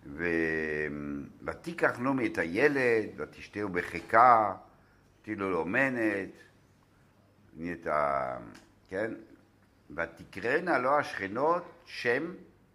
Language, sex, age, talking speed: Hebrew, male, 60-79, 75 wpm